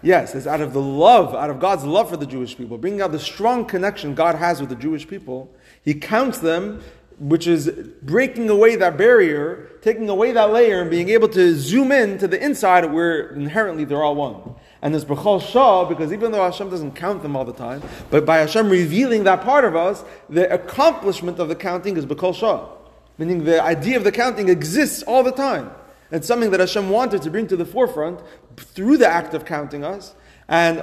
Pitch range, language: 150-200 Hz, English